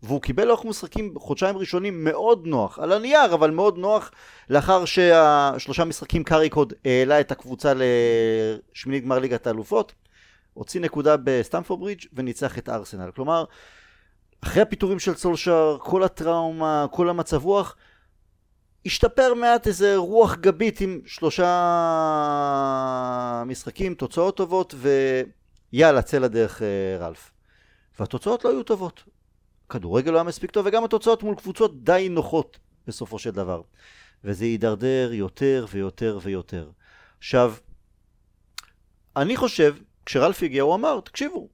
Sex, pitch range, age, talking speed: male, 130-190 Hz, 30-49, 125 wpm